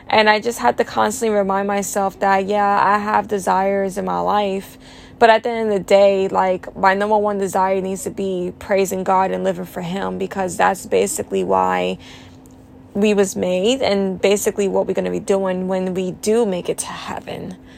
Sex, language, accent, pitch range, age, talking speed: female, English, American, 175-200 Hz, 20-39, 200 wpm